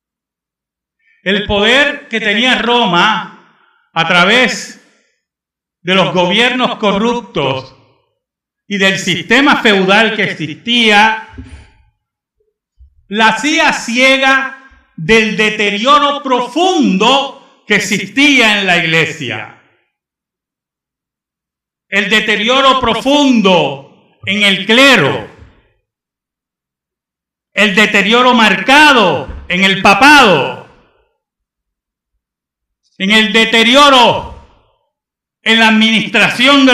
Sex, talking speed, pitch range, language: male, 75 wpm, 170-245 Hz, Spanish